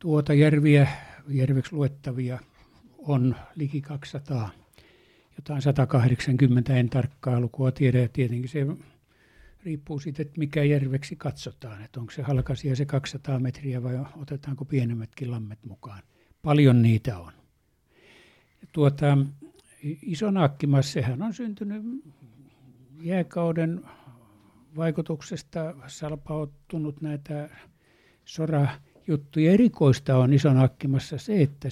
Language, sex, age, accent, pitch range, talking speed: Finnish, male, 60-79, native, 125-150 Hz, 100 wpm